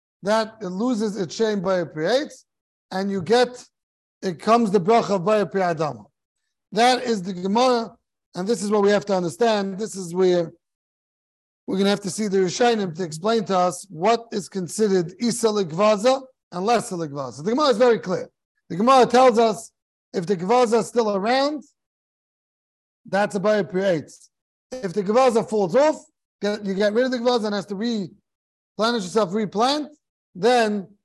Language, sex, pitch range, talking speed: English, male, 185-235 Hz, 170 wpm